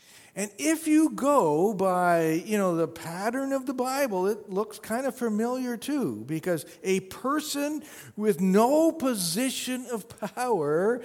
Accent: American